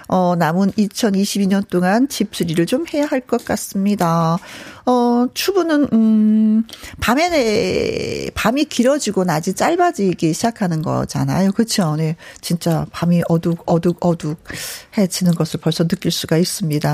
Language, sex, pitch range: Korean, female, 175-265 Hz